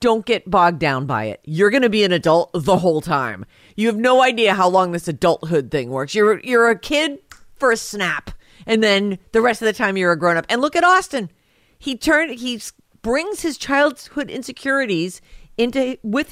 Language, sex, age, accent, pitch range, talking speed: English, female, 50-69, American, 155-220 Hz, 200 wpm